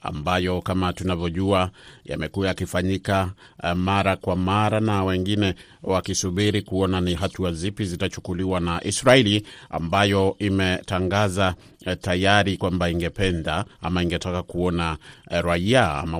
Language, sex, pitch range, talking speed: Swahili, male, 85-100 Hz, 115 wpm